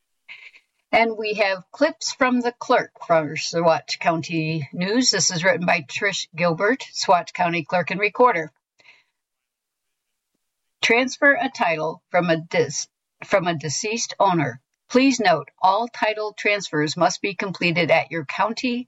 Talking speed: 135 wpm